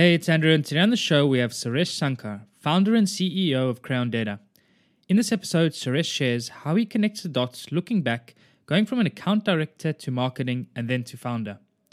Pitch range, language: 125-170 Hz, English